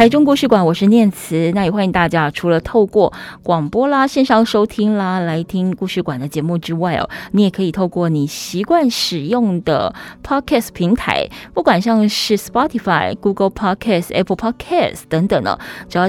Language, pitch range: Chinese, 170-225 Hz